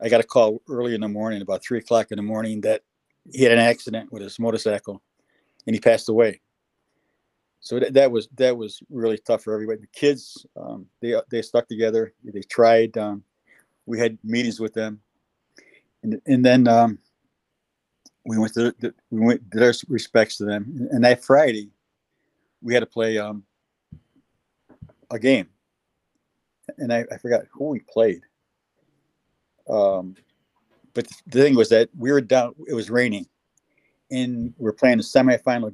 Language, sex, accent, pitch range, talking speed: English, male, American, 110-125 Hz, 170 wpm